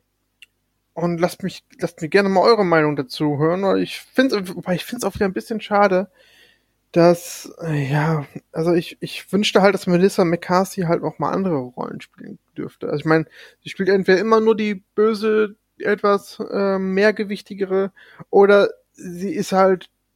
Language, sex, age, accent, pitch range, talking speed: German, male, 20-39, German, 155-205 Hz, 175 wpm